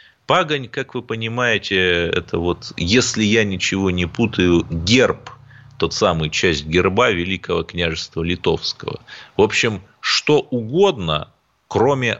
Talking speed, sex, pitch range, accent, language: 120 wpm, male, 85-140 Hz, native, Russian